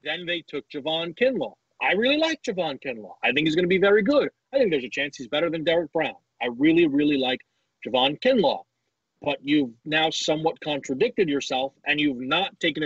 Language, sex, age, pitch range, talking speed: English, male, 30-49, 140-185 Hz, 205 wpm